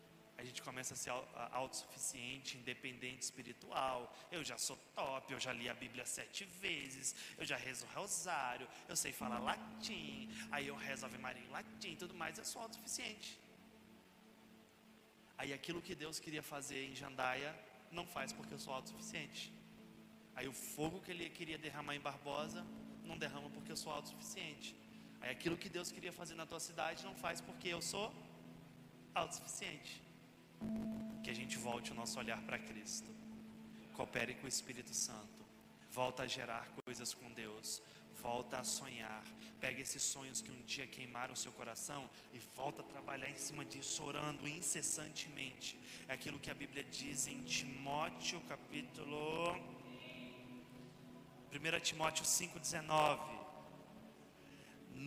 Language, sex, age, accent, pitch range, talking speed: Portuguese, male, 30-49, Brazilian, 125-160 Hz, 150 wpm